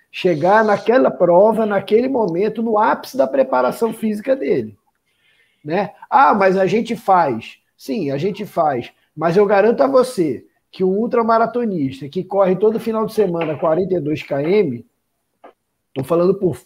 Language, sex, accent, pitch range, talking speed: Portuguese, male, Brazilian, 170-225 Hz, 145 wpm